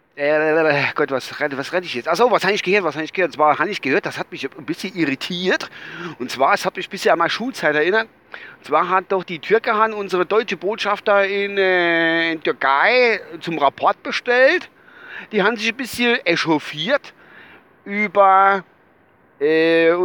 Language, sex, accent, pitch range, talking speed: German, male, German, 150-195 Hz, 190 wpm